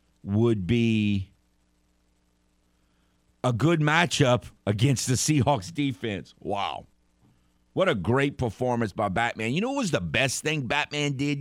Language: English